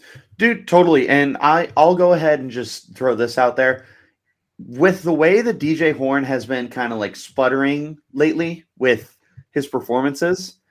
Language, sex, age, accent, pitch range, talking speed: English, male, 30-49, American, 110-140 Hz, 155 wpm